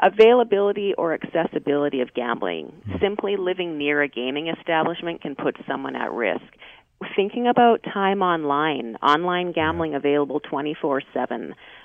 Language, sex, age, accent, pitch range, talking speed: English, female, 40-59, American, 140-180 Hz, 130 wpm